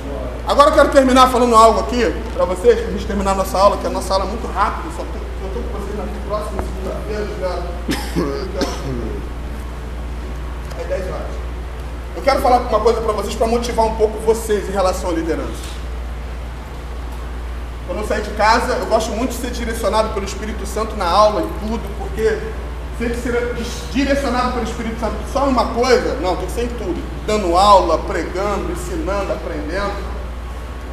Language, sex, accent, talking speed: Portuguese, male, Brazilian, 170 wpm